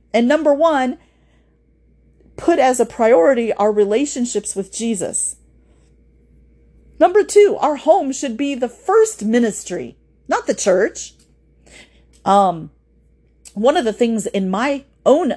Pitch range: 165-260 Hz